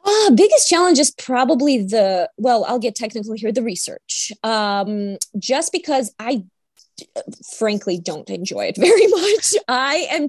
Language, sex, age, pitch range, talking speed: English, female, 20-39, 195-290 Hz, 145 wpm